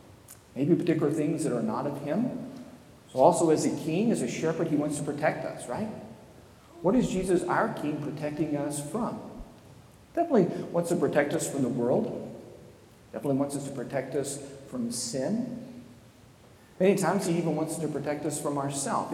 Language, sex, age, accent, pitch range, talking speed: English, male, 40-59, American, 140-170 Hz, 175 wpm